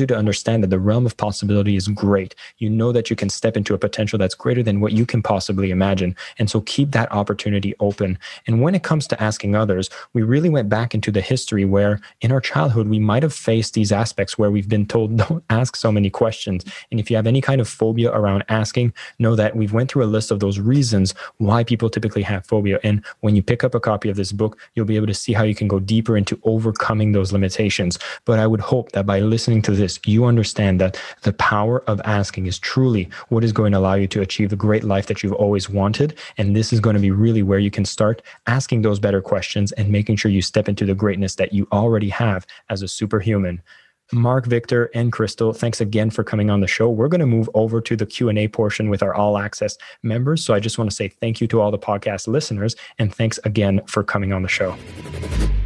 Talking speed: 240 wpm